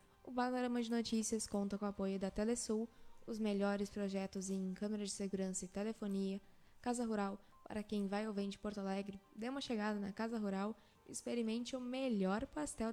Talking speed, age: 180 wpm, 10-29